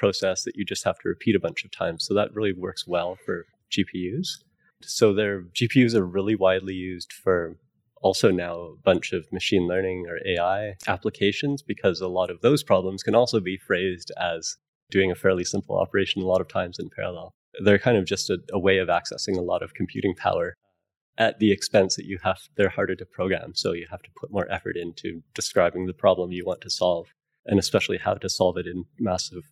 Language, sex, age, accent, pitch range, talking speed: English, male, 20-39, American, 90-110 Hz, 215 wpm